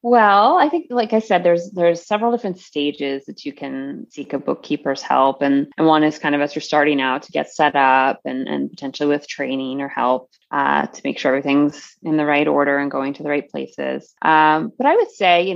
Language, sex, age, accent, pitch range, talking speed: English, female, 20-39, American, 145-190 Hz, 230 wpm